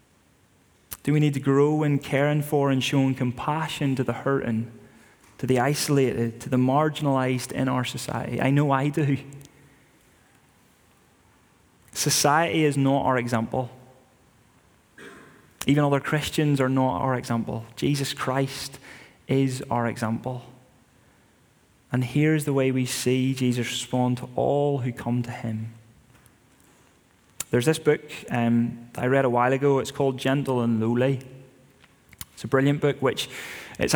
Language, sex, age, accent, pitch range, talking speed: English, male, 20-39, British, 120-140 Hz, 140 wpm